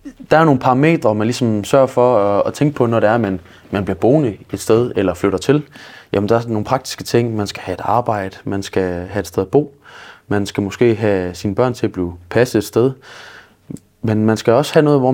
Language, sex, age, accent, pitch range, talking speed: Danish, male, 20-39, native, 100-130 Hz, 240 wpm